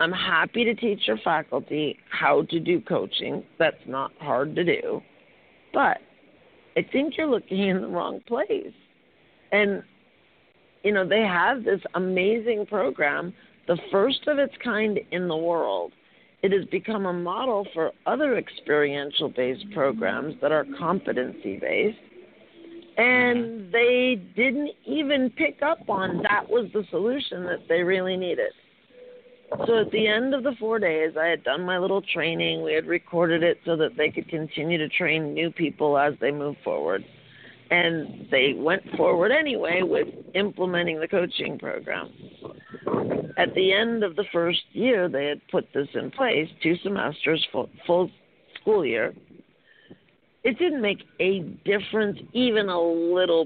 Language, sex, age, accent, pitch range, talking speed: English, female, 50-69, American, 170-235 Hz, 150 wpm